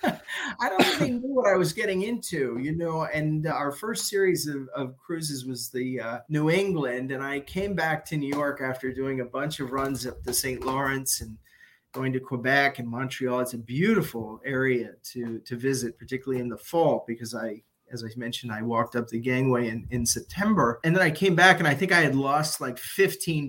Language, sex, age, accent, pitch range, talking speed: English, male, 30-49, American, 125-150 Hz, 210 wpm